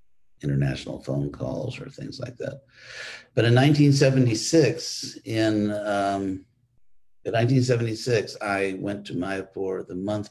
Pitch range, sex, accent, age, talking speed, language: 90-120 Hz, male, American, 50-69, 115 wpm, English